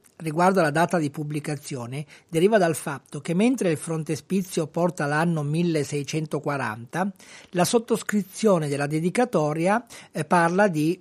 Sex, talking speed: male, 115 wpm